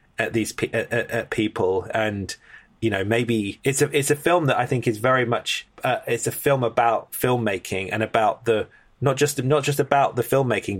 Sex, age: male, 20-39